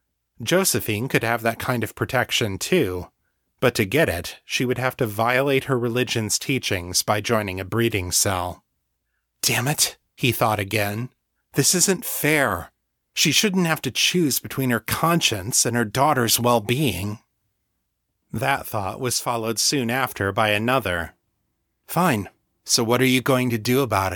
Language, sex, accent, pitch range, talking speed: English, male, American, 105-130 Hz, 155 wpm